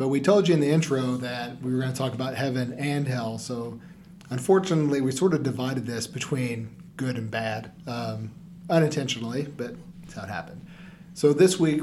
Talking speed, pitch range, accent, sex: 195 wpm, 130-175 Hz, American, male